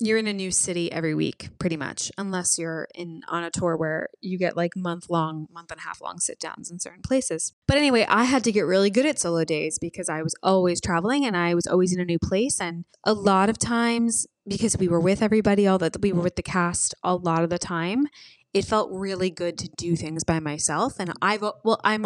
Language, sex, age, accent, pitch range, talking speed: English, female, 20-39, American, 170-205 Hz, 245 wpm